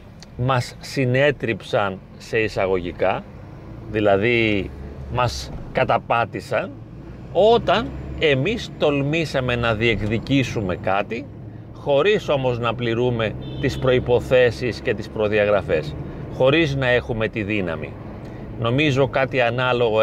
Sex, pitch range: male, 110-140 Hz